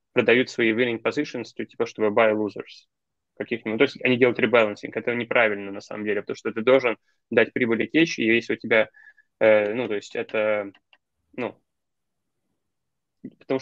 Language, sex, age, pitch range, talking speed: Russian, male, 20-39, 100-120 Hz, 165 wpm